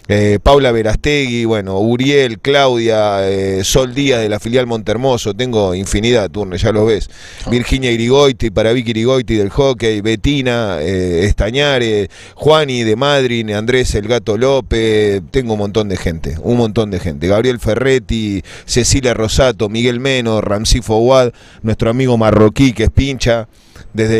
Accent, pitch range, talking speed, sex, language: Argentinian, 105-135 Hz, 145 wpm, male, Spanish